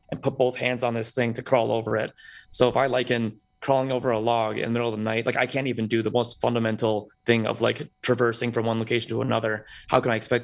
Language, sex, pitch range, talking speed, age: English, male, 110-120 Hz, 270 wpm, 20-39